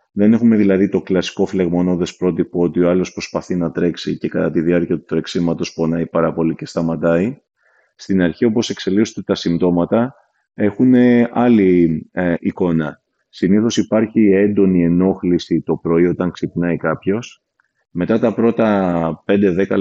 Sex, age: male, 30-49